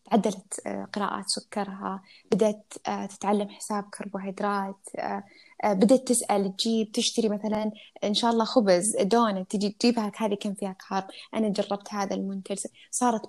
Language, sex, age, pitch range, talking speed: Arabic, female, 20-39, 200-230 Hz, 120 wpm